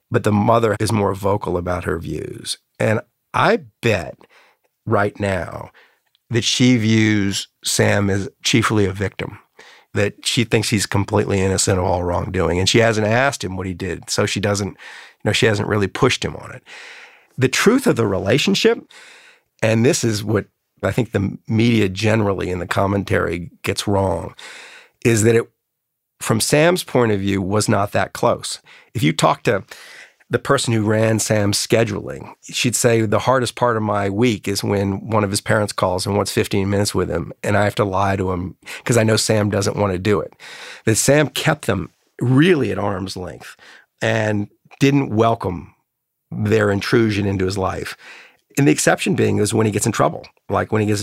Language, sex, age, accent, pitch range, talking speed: English, male, 50-69, American, 100-115 Hz, 185 wpm